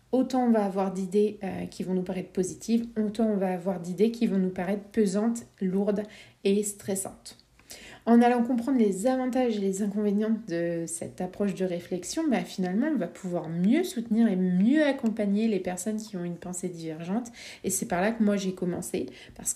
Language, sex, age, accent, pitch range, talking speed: French, female, 30-49, French, 190-225 Hz, 190 wpm